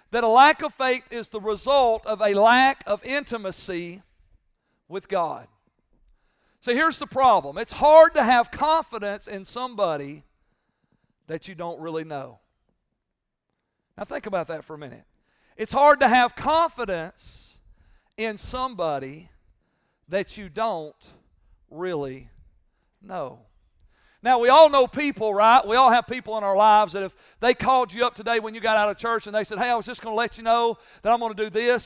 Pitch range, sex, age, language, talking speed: 195-245 Hz, male, 50-69, English, 175 wpm